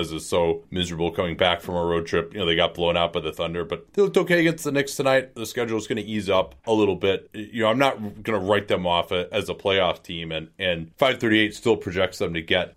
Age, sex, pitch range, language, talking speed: 30-49, male, 95-120 Hz, English, 270 wpm